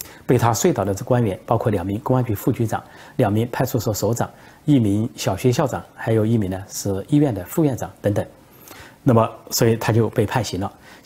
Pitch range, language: 100-130 Hz, Chinese